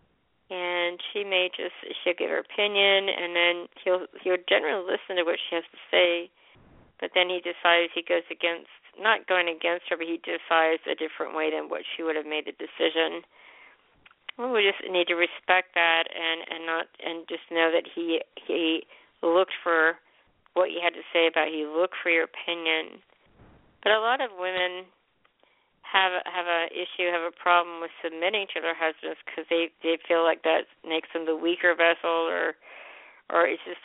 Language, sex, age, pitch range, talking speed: English, female, 50-69, 165-180 Hz, 190 wpm